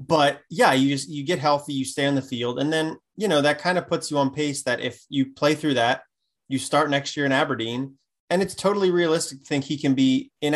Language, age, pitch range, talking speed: English, 20-39, 120-145 Hz, 255 wpm